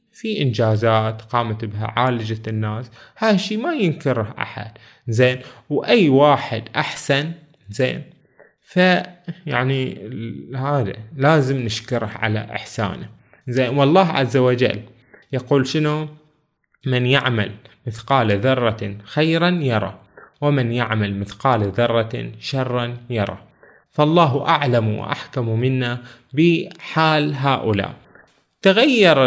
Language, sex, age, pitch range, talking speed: Arabic, male, 20-39, 120-155 Hz, 100 wpm